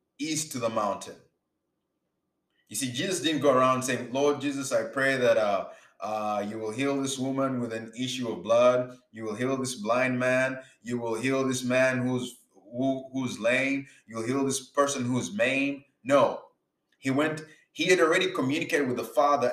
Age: 20-39